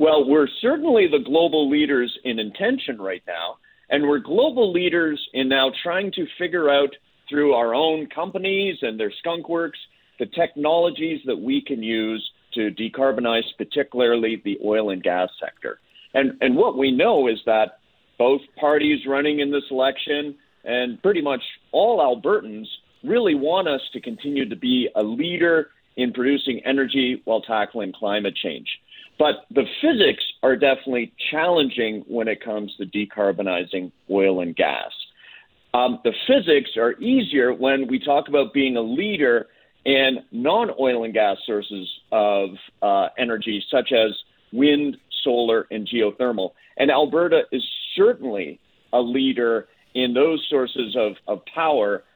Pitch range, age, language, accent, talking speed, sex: 115-155 Hz, 50-69, English, American, 145 wpm, male